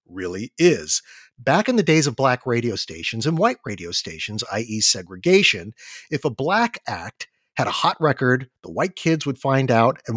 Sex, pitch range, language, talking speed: male, 115-170 Hz, English, 185 wpm